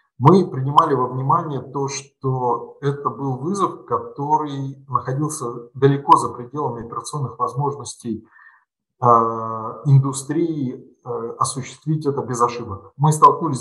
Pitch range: 125-150 Hz